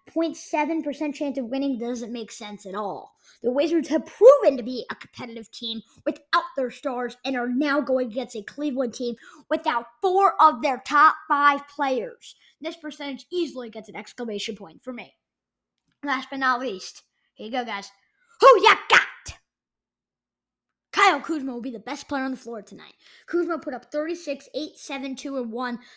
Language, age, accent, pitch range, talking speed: English, 20-39, American, 235-290 Hz, 180 wpm